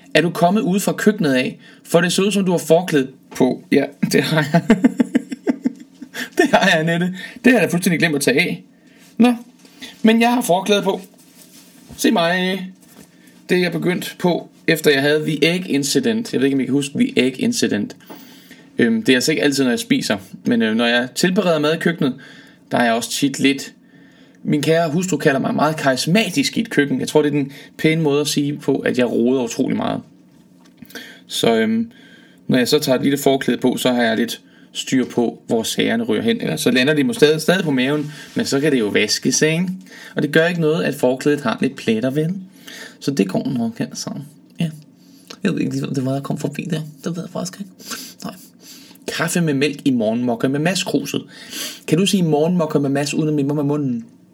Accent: native